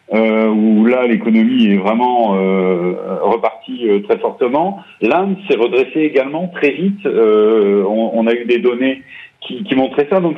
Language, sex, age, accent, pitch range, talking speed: French, male, 40-59, French, 125-190 Hz, 170 wpm